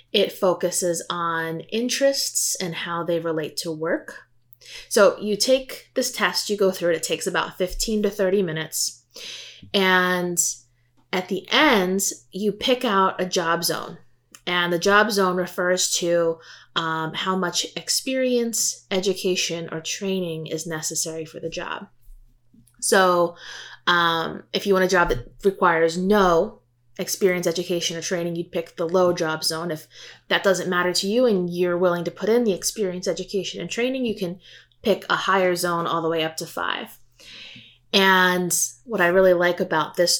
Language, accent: English, American